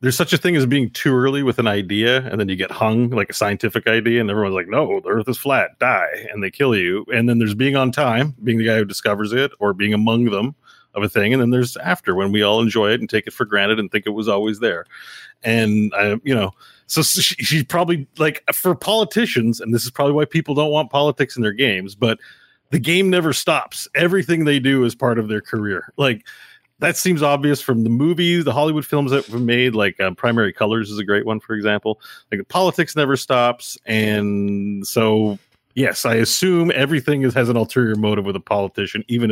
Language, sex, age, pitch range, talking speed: English, male, 30-49, 105-140 Hz, 225 wpm